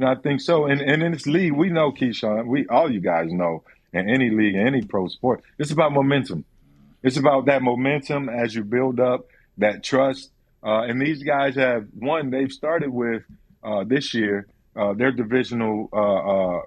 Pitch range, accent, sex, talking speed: 105-125 Hz, American, male, 185 wpm